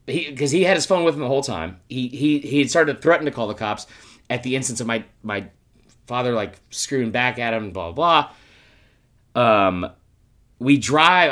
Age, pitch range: 30-49, 105-150 Hz